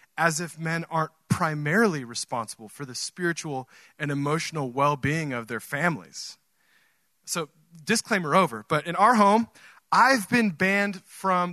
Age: 30-49